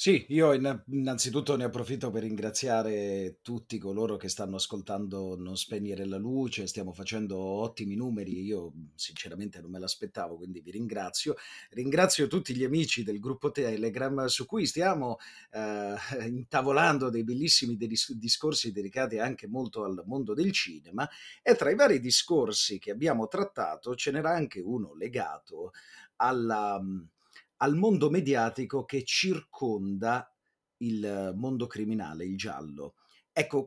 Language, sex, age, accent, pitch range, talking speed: Italian, male, 30-49, native, 100-140 Hz, 135 wpm